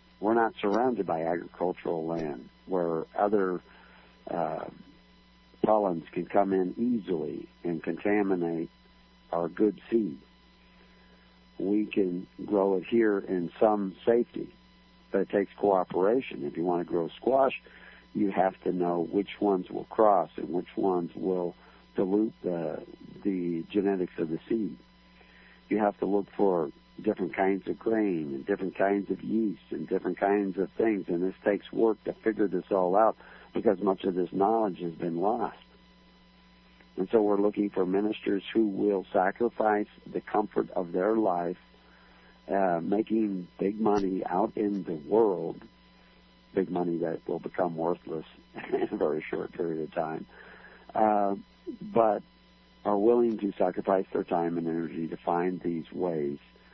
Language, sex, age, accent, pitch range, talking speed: English, male, 60-79, American, 90-105 Hz, 150 wpm